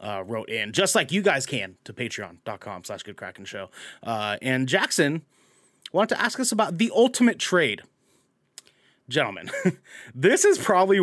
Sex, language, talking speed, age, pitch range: male, English, 140 wpm, 30-49, 120-190 Hz